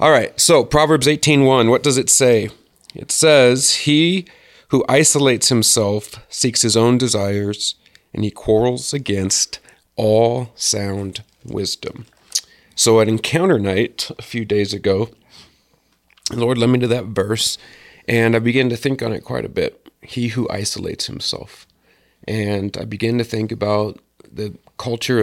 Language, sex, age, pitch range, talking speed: English, male, 40-59, 105-125 Hz, 145 wpm